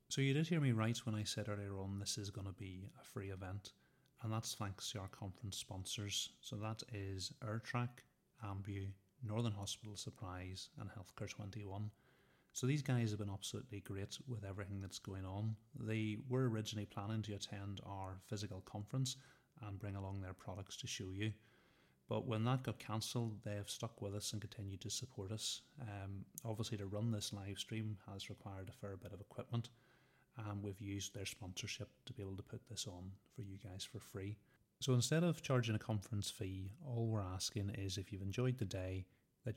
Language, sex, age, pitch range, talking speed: English, male, 30-49, 95-115 Hz, 195 wpm